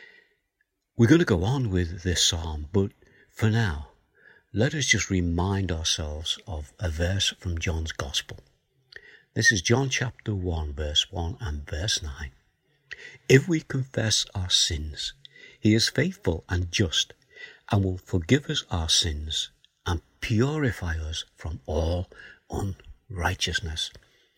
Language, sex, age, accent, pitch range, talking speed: English, male, 60-79, British, 80-110 Hz, 135 wpm